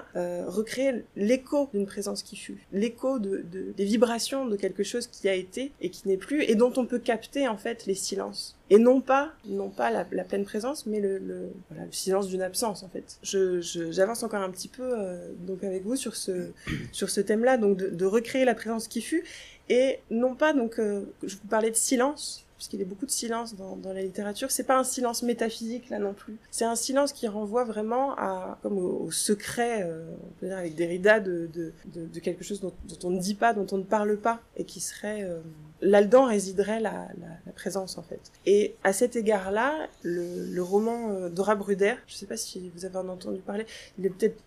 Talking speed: 225 wpm